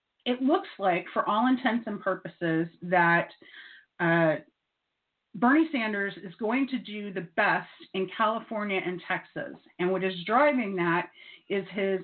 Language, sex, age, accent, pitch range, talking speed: English, female, 30-49, American, 185-220 Hz, 145 wpm